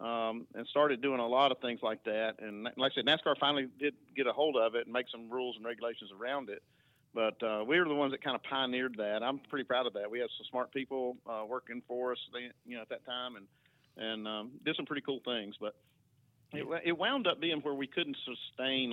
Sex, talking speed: male, 250 wpm